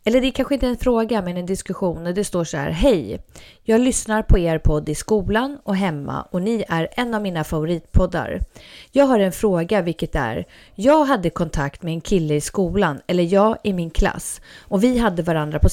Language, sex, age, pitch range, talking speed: English, female, 30-49, 160-225 Hz, 210 wpm